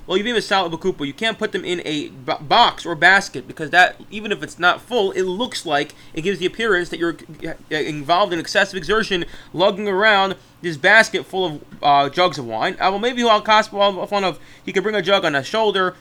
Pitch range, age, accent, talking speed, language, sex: 160-200 Hz, 20-39, American, 230 wpm, English, male